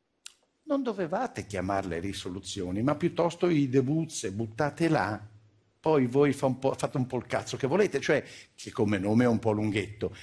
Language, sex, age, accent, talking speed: Italian, male, 50-69, native, 175 wpm